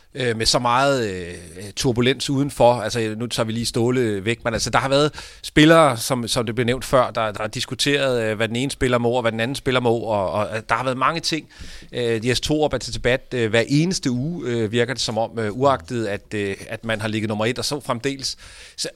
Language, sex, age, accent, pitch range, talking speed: Danish, male, 30-49, native, 115-135 Hz, 235 wpm